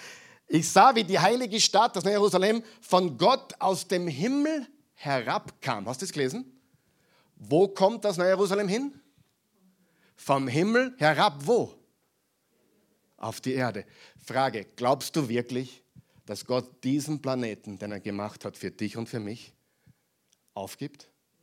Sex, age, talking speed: male, 50-69, 140 wpm